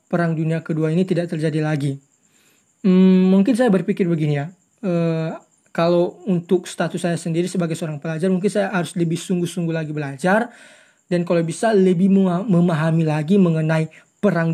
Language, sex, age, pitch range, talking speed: Indonesian, male, 20-39, 160-190 Hz, 155 wpm